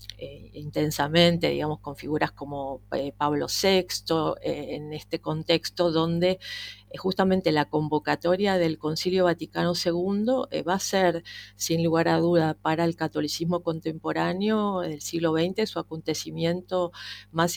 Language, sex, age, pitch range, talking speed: Spanish, female, 40-59, 155-185 Hz, 135 wpm